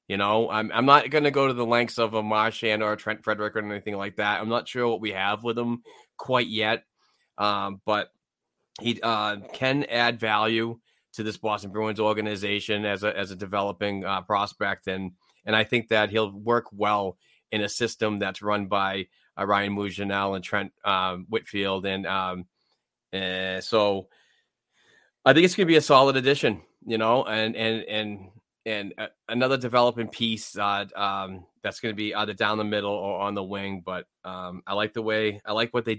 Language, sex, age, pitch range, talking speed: English, male, 30-49, 100-120 Hz, 195 wpm